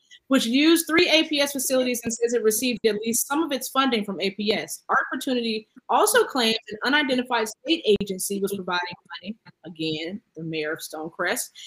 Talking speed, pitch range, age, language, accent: 170 wpm, 200-255 Hz, 20-39, English, American